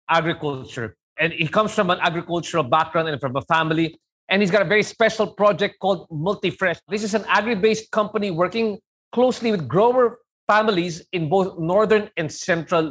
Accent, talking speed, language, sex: Filipino, 165 wpm, English, male